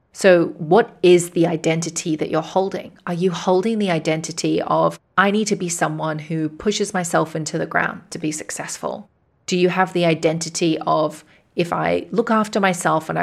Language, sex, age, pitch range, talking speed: English, female, 30-49, 160-195 Hz, 180 wpm